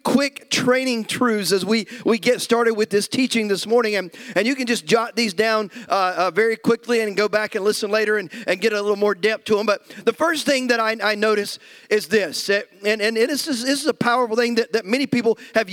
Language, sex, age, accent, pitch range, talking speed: English, male, 40-59, American, 215-255 Hz, 235 wpm